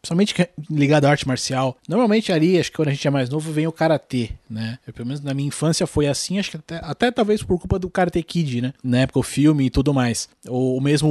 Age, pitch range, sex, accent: 20-39, 135-165 Hz, male, Brazilian